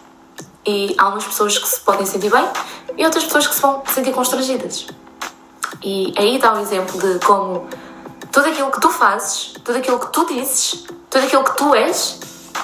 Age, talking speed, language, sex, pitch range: 20-39, 185 wpm, Portuguese, female, 235-300 Hz